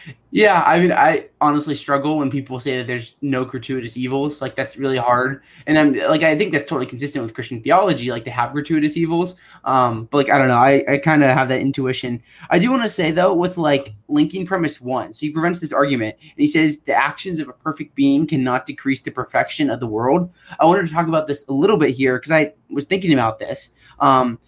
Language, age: English, 20-39